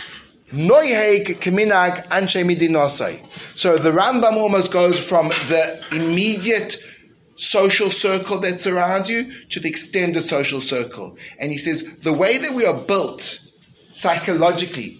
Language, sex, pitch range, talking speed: English, male, 160-210 Hz, 110 wpm